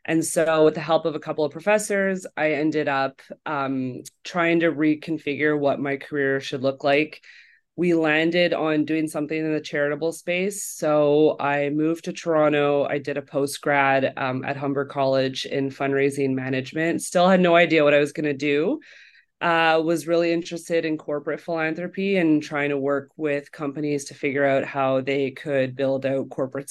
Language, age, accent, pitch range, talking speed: English, 30-49, American, 145-170 Hz, 175 wpm